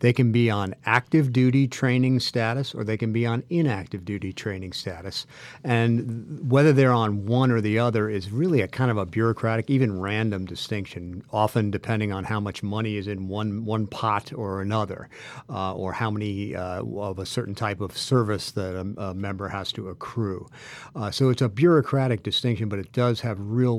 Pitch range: 105-125 Hz